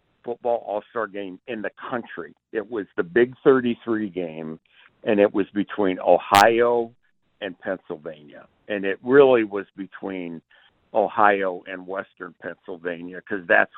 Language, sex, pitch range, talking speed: English, male, 95-115 Hz, 130 wpm